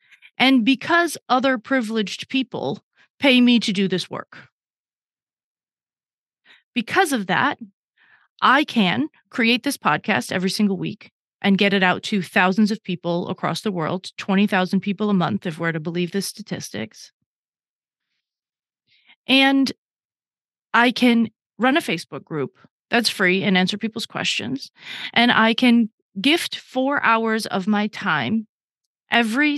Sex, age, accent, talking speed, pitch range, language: female, 30-49, American, 135 wpm, 185-245 Hz, English